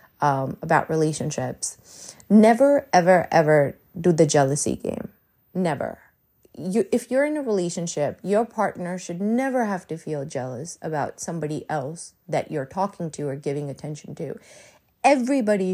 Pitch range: 155-200 Hz